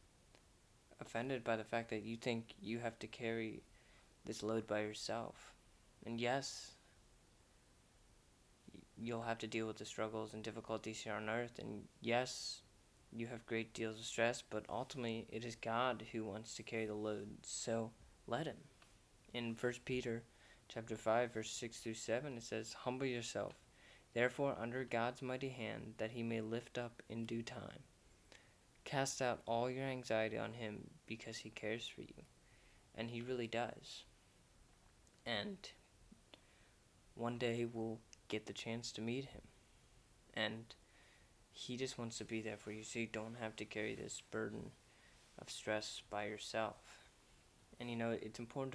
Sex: male